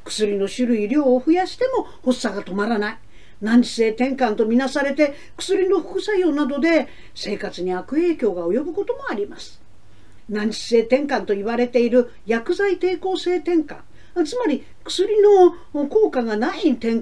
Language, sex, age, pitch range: Japanese, female, 50-69, 220-355 Hz